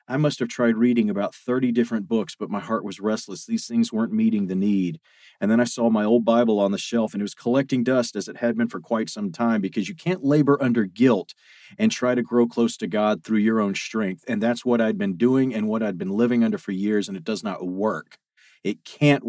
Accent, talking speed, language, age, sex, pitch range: American, 250 wpm, English, 40-59, male, 105-130 Hz